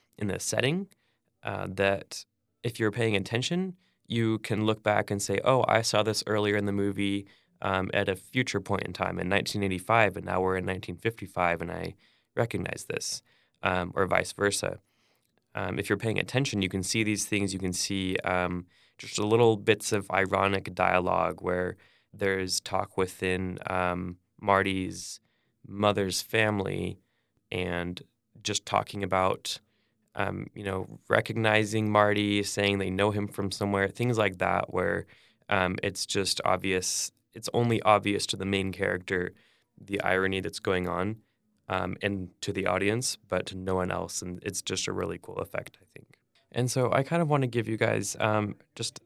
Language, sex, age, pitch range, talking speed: English, male, 20-39, 95-110 Hz, 170 wpm